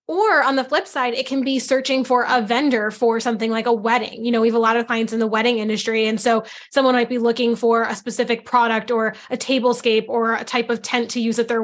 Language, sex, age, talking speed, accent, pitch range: English, female, 10-29, 265 wpm, American, 230-265 Hz